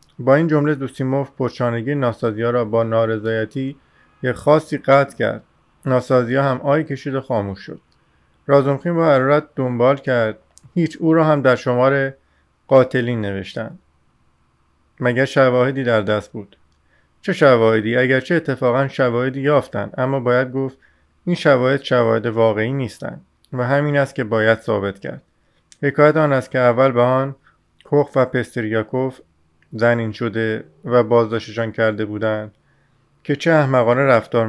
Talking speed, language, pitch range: 135 wpm, Persian, 115-140 Hz